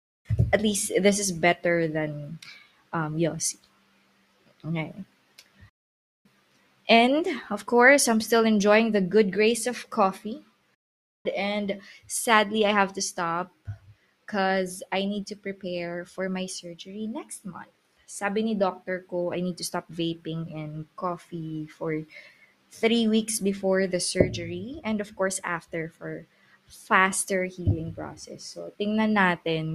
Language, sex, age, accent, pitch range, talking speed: Filipino, female, 20-39, native, 170-215 Hz, 130 wpm